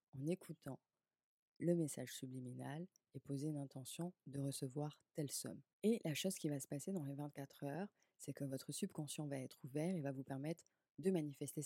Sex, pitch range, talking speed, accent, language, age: female, 140-165 Hz, 190 wpm, French, French, 20-39